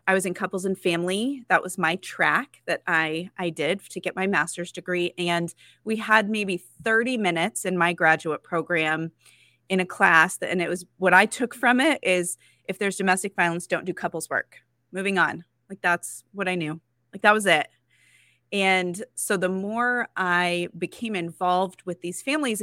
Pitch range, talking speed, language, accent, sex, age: 165-200 Hz, 185 wpm, English, American, female, 30-49